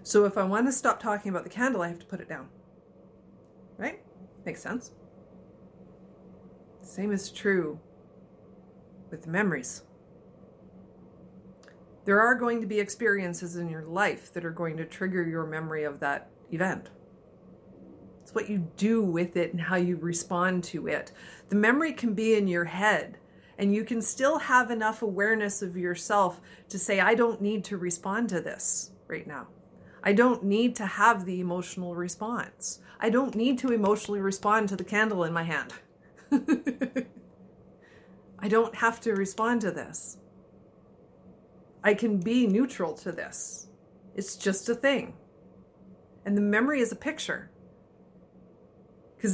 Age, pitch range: 40-59, 180-230 Hz